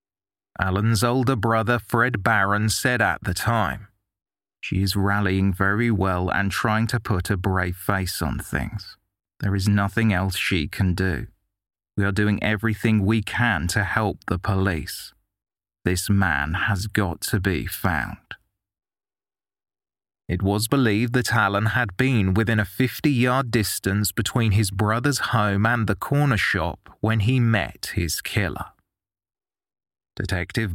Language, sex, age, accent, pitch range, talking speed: English, male, 30-49, British, 95-115 Hz, 140 wpm